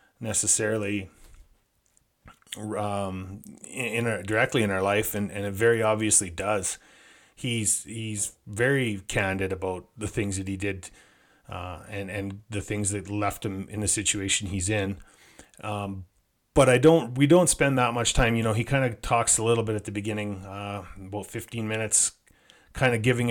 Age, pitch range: 30-49, 100-110 Hz